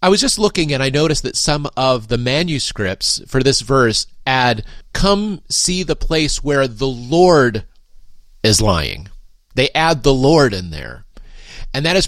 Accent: American